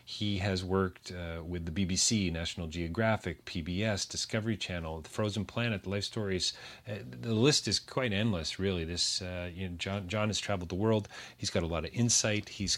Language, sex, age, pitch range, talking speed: English, male, 40-59, 85-105 Hz, 195 wpm